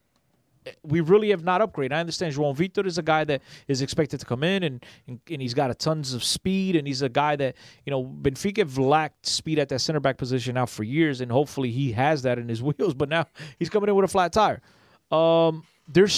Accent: American